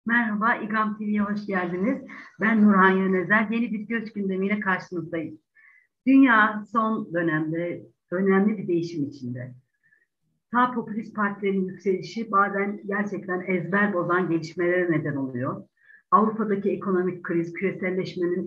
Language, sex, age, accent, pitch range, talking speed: Turkish, female, 60-79, native, 175-230 Hz, 115 wpm